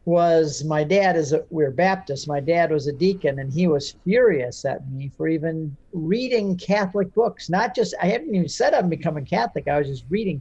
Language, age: English, 50-69